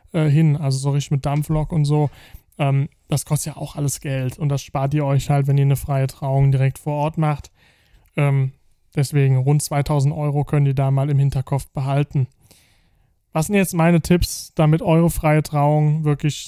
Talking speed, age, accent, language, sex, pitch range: 190 wpm, 20-39, German, German, male, 145-160 Hz